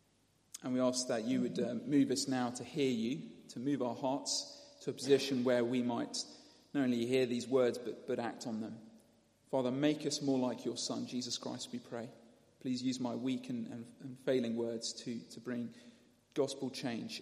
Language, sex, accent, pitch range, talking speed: English, male, British, 125-170 Hz, 200 wpm